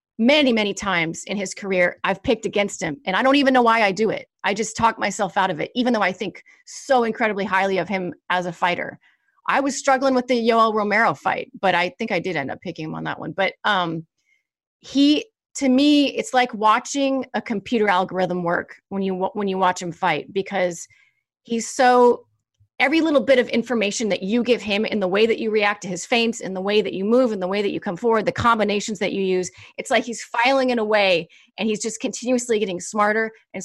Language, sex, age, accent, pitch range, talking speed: English, female, 30-49, American, 185-240 Hz, 230 wpm